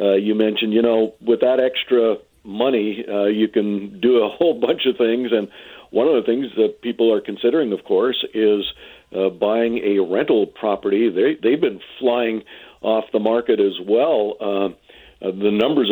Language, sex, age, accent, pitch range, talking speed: English, male, 50-69, American, 110-165 Hz, 180 wpm